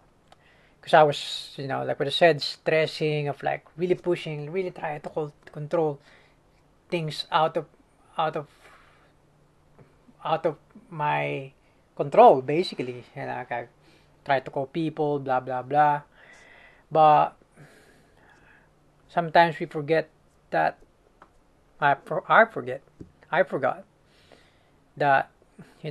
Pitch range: 140-165 Hz